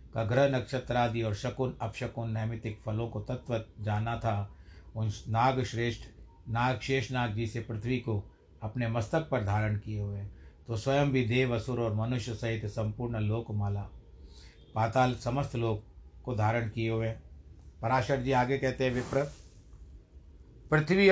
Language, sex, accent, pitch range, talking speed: Hindi, male, native, 100-125 Hz, 150 wpm